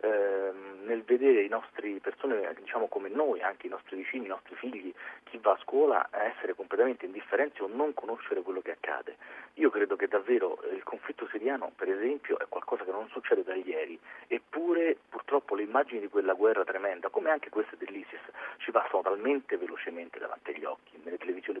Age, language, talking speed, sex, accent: 40-59, Italian, 180 wpm, male, native